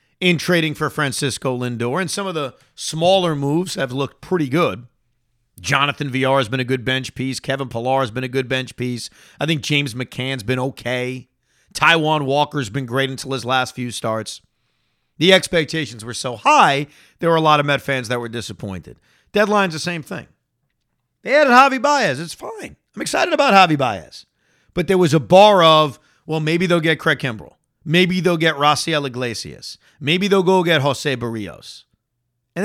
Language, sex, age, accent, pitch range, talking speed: English, male, 40-59, American, 130-190 Hz, 185 wpm